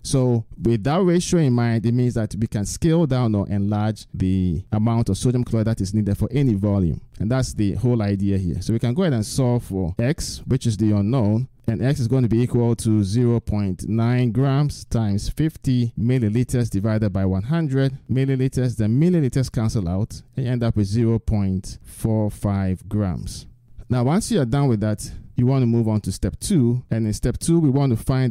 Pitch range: 105-130 Hz